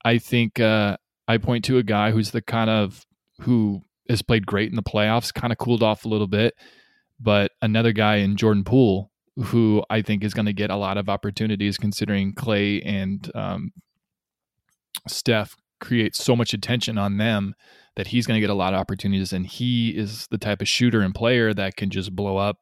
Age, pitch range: 20-39, 100-120 Hz